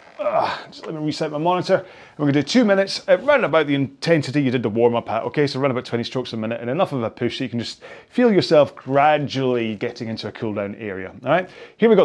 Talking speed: 270 wpm